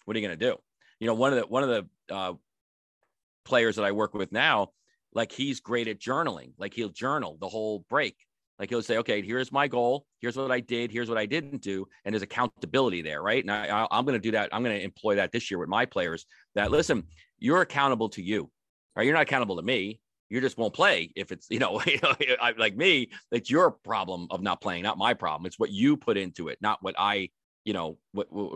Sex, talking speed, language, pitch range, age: male, 250 wpm, English, 95-125 Hz, 40-59